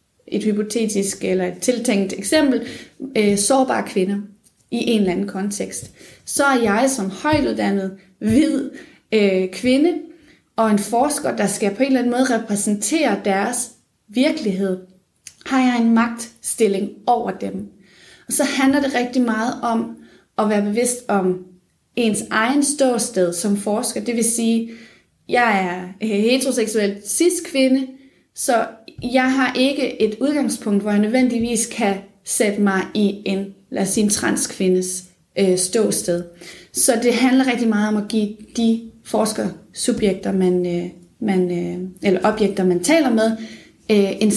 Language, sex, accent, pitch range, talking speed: Danish, female, native, 195-245 Hz, 140 wpm